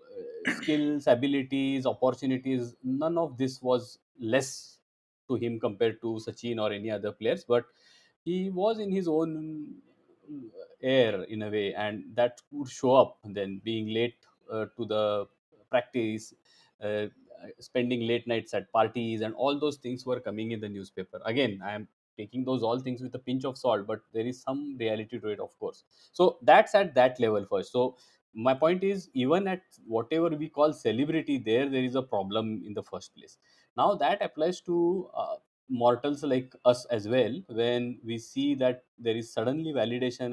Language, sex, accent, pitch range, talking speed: English, male, Indian, 110-145 Hz, 175 wpm